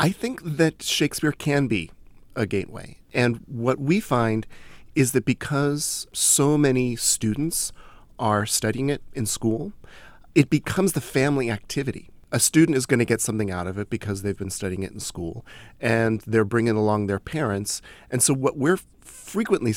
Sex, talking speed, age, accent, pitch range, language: male, 170 wpm, 40-59, American, 105-130 Hz, English